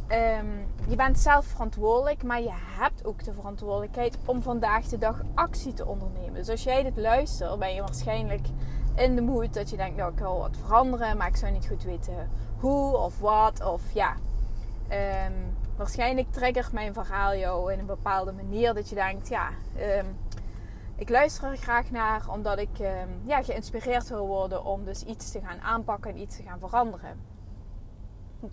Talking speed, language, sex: 185 wpm, Dutch, female